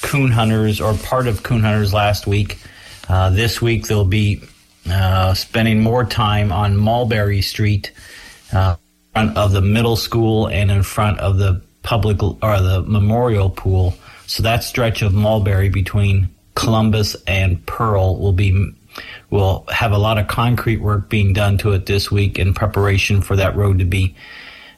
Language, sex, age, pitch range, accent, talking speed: English, male, 40-59, 95-110 Hz, American, 165 wpm